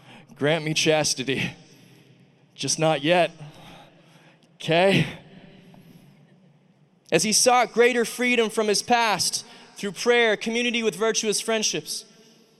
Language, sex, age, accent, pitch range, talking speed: English, male, 20-39, American, 165-225 Hz, 100 wpm